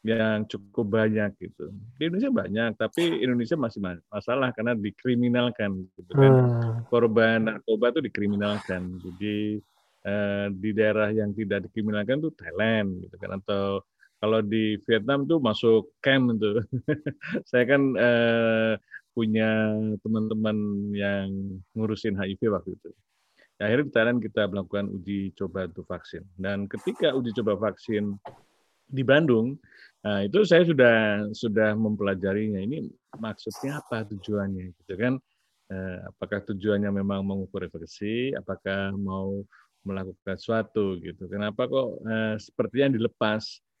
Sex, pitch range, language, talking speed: male, 100-120 Hz, Indonesian, 130 wpm